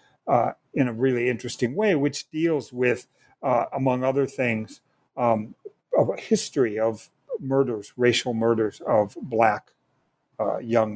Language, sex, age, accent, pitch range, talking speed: English, male, 60-79, American, 120-150 Hz, 130 wpm